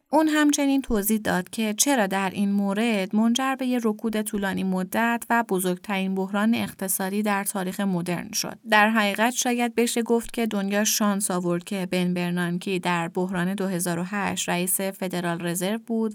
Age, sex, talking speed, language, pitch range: 20-39, female, 150 wpm, Persian, 190-235 Hz